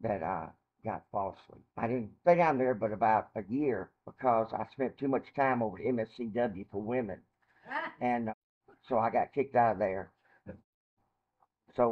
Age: 60-79